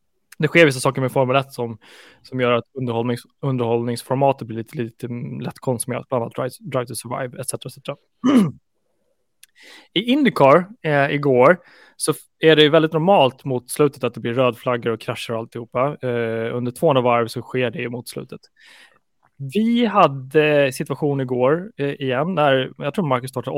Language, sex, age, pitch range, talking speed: Swedish, male, 20-39, 120-155 Hz, 170 wpm